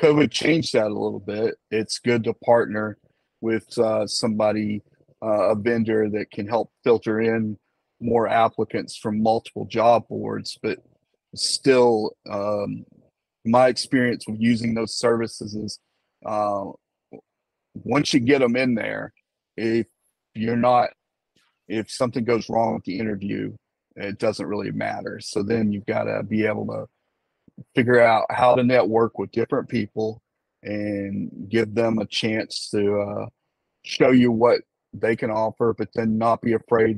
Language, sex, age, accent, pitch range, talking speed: English, male, 30-49, American, 105-120 Hz, 150 wpm